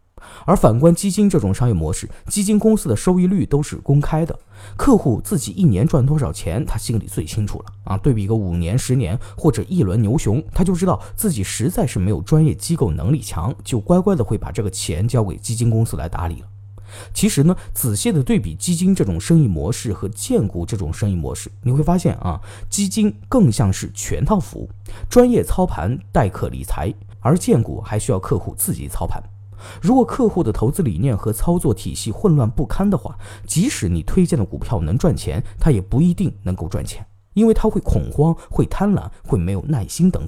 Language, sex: Chinese, male